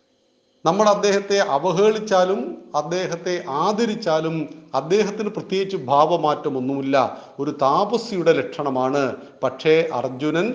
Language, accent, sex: Malayalam, native, male